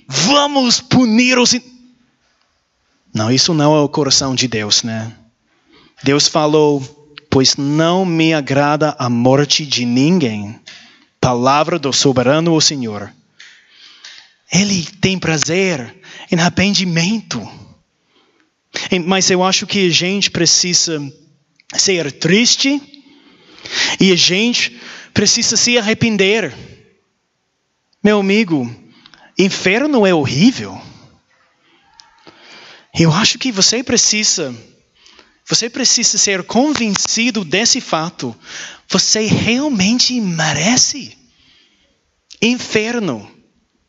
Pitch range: 150-220 Hz